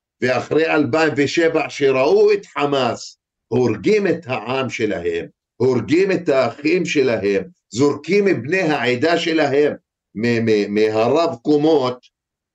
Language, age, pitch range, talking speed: Hebrew, 50-69, 140-170 Hz, 90 wpm